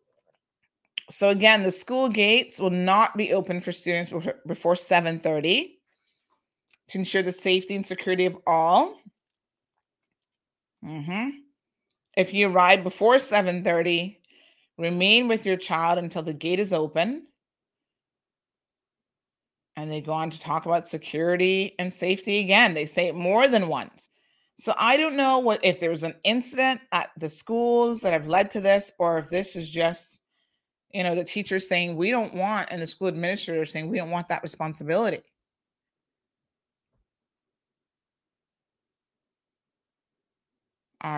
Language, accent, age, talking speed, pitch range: English, American, 30-49, 140 wpm, 170-220 Hz